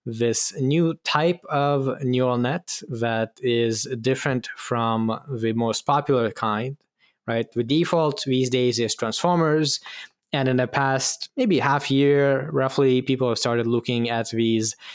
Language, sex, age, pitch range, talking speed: English, male, 10-29, 120-140 Hz, 140 wpm